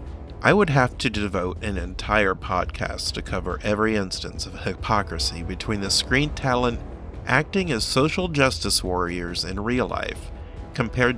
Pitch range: 85-130 Hz